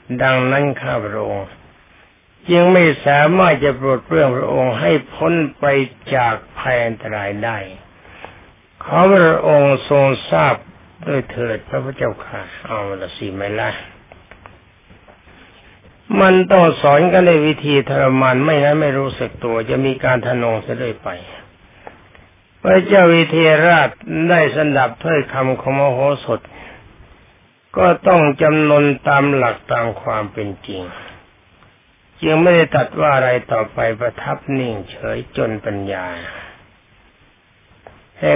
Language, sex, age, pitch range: Thai, male, 60-79, 110-150 Hz